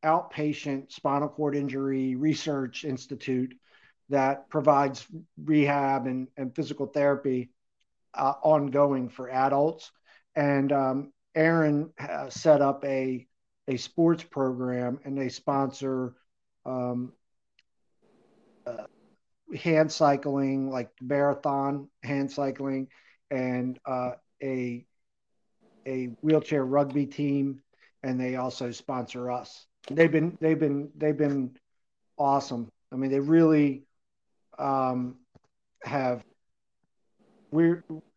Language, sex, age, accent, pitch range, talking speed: English, male, 50-69, American, 125-140 Hz, 100 wpm